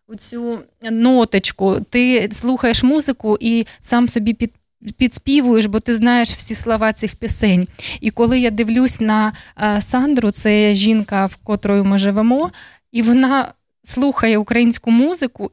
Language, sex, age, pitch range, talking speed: Dutch, female, 20-39, 200-235 Hz, 130 wpm